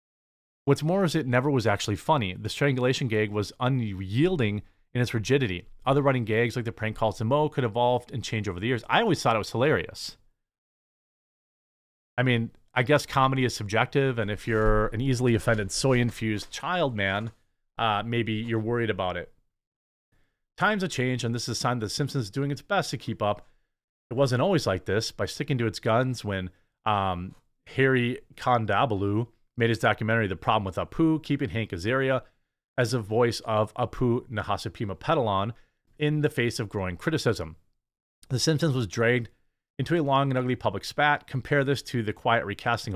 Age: 30-49